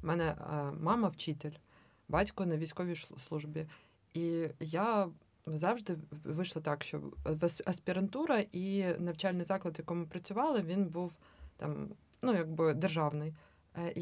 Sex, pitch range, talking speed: female, 160-195 Hz, 115 wpm